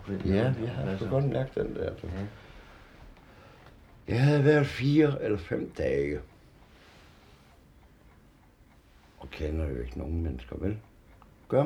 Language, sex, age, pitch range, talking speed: Danish, male, 60-79, 75-110 Hz, 120 wpm